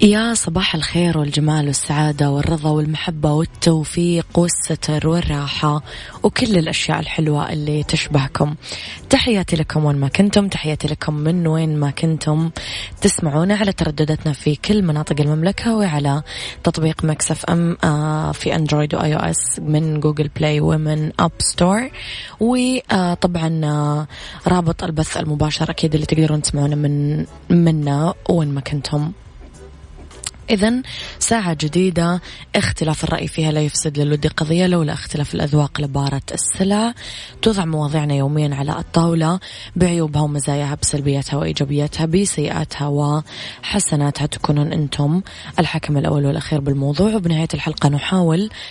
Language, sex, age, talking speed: Arabic, female, 20-39, 120 wpm